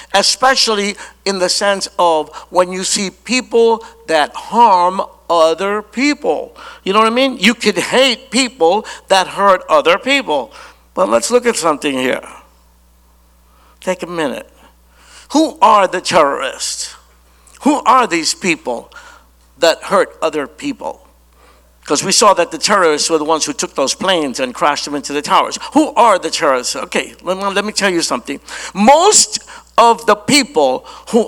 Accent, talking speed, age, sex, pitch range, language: American, 155 wpm, 60-79, male, 165-240 Hz, English